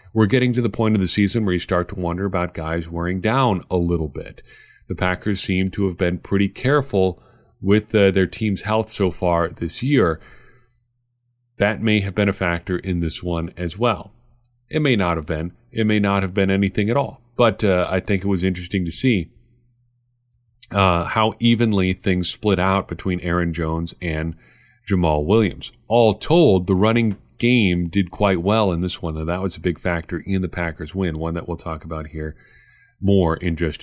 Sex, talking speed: male, 200 wpm